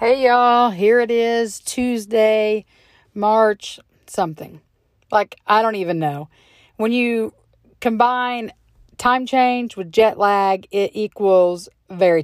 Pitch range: 175-225 Hz